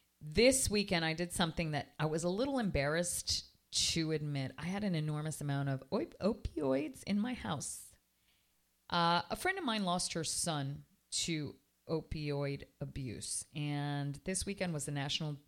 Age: 40-59